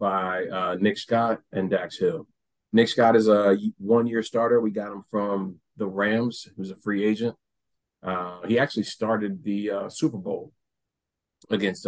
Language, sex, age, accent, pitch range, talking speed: English, male, 30-49, American, 95-110 Hz, 160 wpm